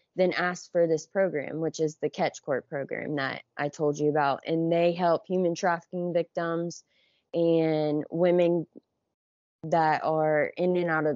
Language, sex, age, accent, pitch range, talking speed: English, female, 20-39, American, 155-180 Hz, 160 wpm